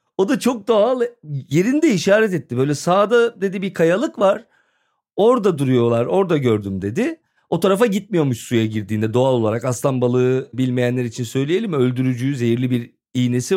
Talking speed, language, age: 150 wpm, Turkish, 40-59